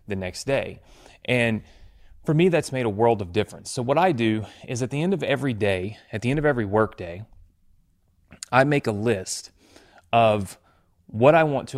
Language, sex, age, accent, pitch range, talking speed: English, male, 30-49, American, 95-110 Hz, 195 wpm